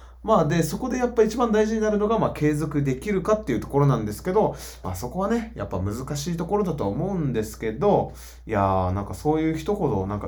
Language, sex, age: Japanese, male, 20-39